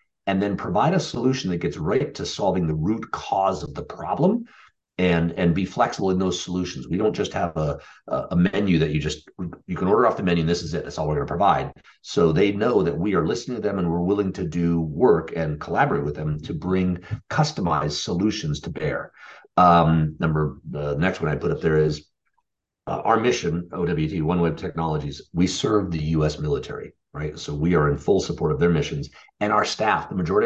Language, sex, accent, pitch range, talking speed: English, male, American, 75-95 Hz, 220 wpm